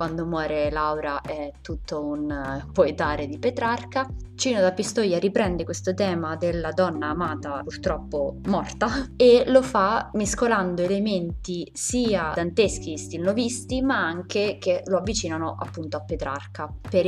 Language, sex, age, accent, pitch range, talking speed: Italian, female, 20-39, native, 165-200 Hz, 135 wpm